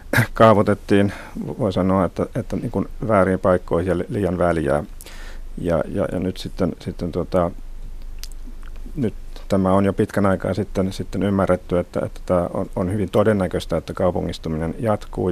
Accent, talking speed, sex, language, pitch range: native, 145 wpm, male, Finnish, 85-95 Hz